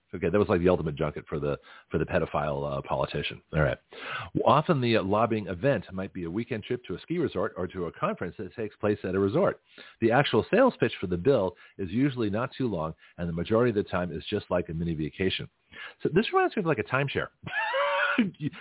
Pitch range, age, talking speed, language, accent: 95-135 Hz, 40-59, 235 wpm, English, American